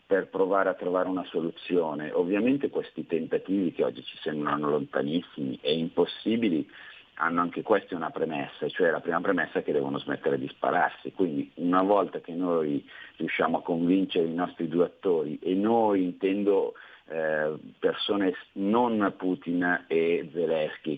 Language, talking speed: Italian, 145 wpm